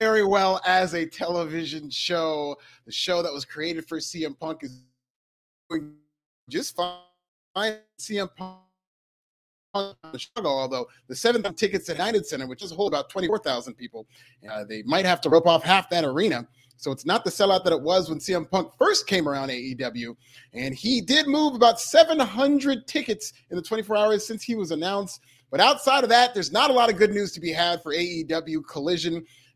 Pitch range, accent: 145-205 Hz, American